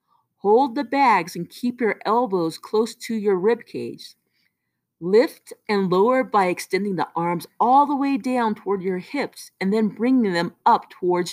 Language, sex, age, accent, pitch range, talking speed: English, female, 40-59, American, 190-260 Hz, 170 wpm